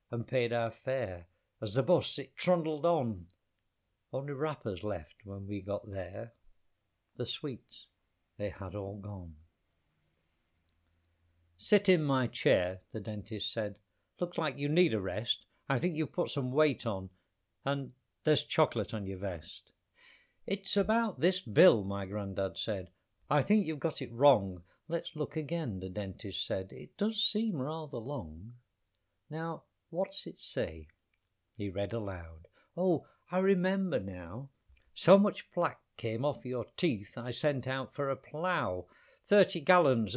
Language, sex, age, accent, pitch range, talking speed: English, male, 60-79, British, 100-155 Hz, 150 wpm